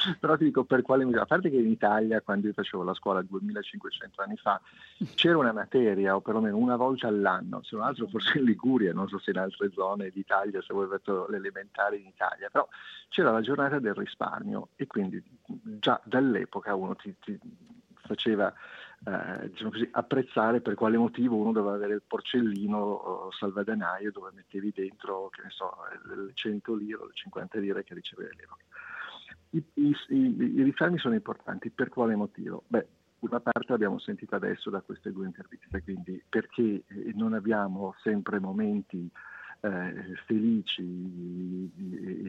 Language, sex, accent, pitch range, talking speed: Italian, male, native, 100-130 Hz, 165 wpm